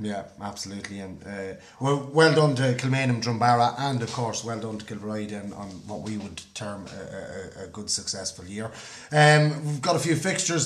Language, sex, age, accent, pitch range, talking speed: English, male, 30-49, Irish, 110-135 Hz, 195 wpm